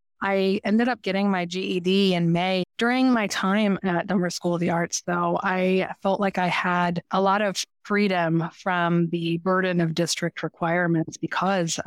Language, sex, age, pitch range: English, female, 30-49, 175-200 Hz